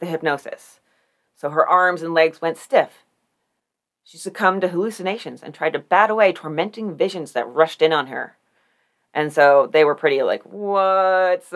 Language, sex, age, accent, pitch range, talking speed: English, female, 30-49, American, 155-215 Hz, 165 wpm